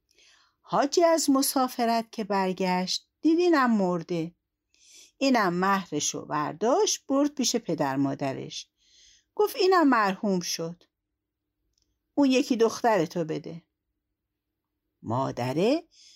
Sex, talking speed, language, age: female, 95 wpm, Persian, 60-79